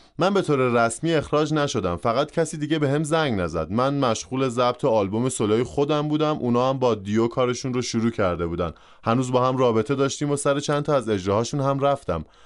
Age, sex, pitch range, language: 20-39, male, 110-150 Hz, Persian